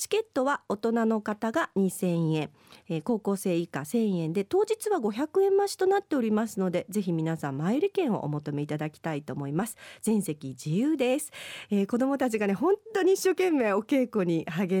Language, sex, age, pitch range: Japanese, female, 40-59, 175-280 Hz